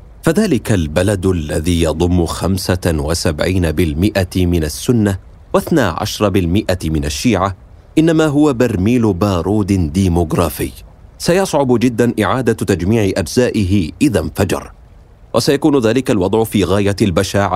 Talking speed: 100 wpm